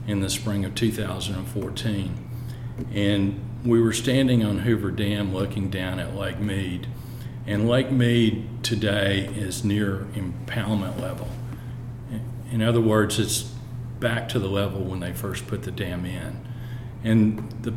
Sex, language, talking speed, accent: male, English, 140 wpm, American